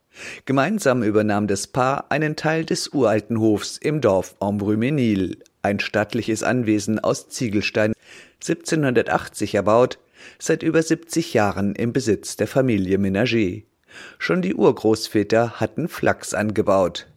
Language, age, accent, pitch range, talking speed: German, 50-69, German, 100-135 Hz, 120 wpm